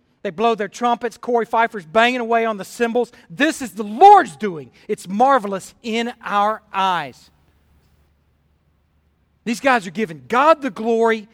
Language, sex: English, male